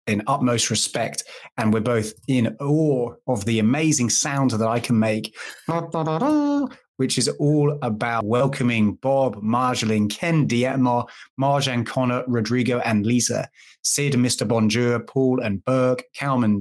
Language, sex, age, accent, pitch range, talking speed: English, male, 30-49, British, 115-135 Hz, 135 wpm